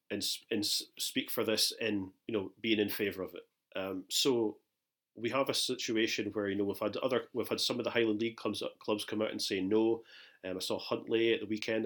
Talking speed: 240 wpm